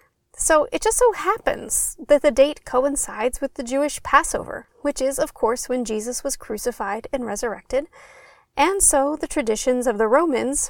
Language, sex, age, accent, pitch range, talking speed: English, female, 30-49, American, 230-305 Hz, 170 wpm